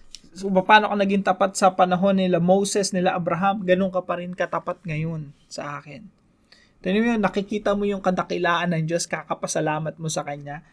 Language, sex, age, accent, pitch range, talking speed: English, male, 20-39, Filipino, 160-200 Hz, 180 wpm